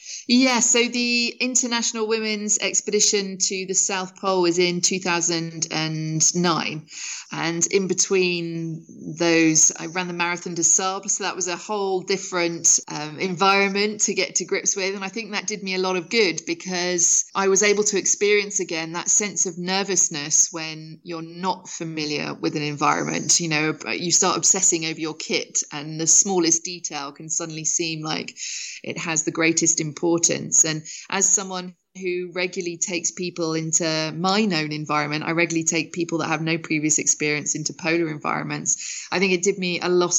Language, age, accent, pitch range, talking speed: English, 30-49, British, 160-190 Hz, 175 wpm